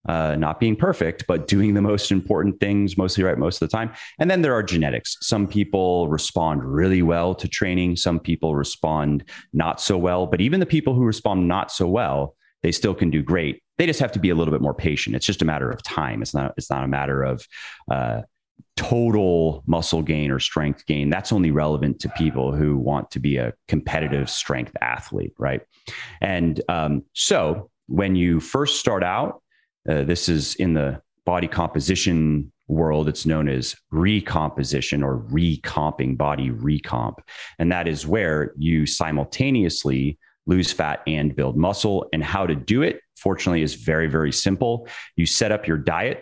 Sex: male